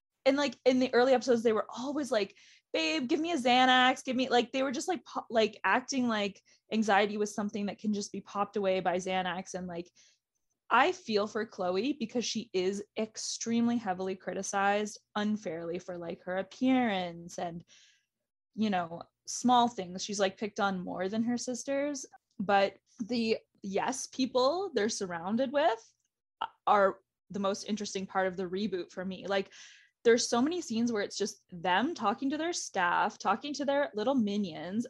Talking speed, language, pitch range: 175 wpm, English, 200-265 Hz